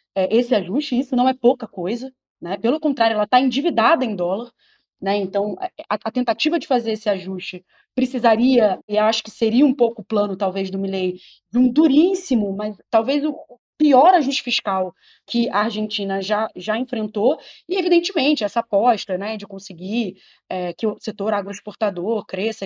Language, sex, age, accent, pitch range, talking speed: Portuguese, female, 20-39, Brazilian, 215-285 Hz, 165 wpm